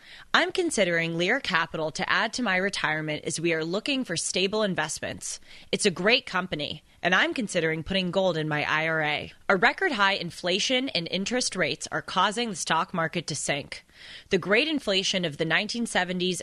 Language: English